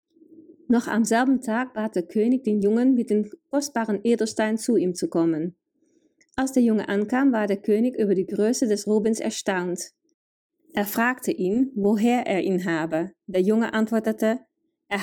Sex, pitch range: female, 190-265 Hz